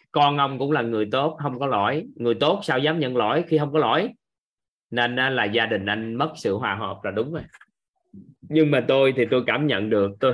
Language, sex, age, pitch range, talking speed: Vietnamese, male, 20-39, 105-140 Hz, 230 wpm